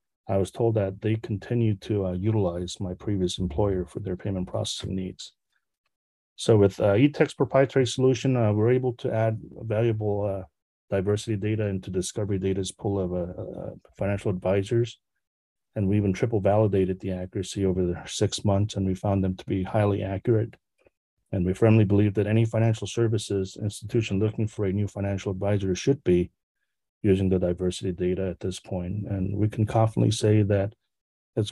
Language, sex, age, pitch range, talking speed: English, male, 30-49, 95-110 Hz, 175 wpm